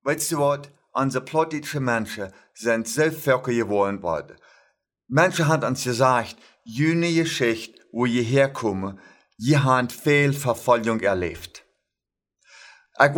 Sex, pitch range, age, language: male, 120-155 Hz, 50-69, German